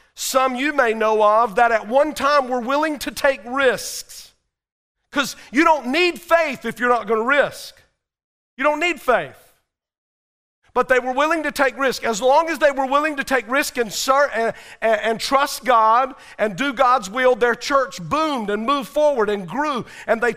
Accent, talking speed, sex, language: American, 190 wpm, male, English